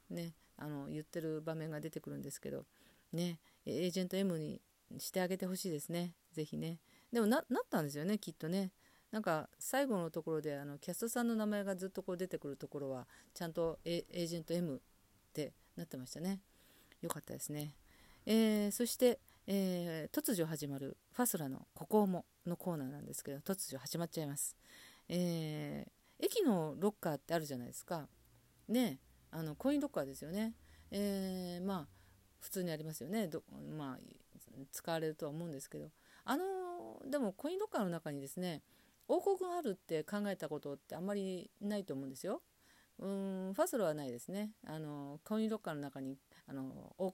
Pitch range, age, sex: 155-205 Hz, 40-59, female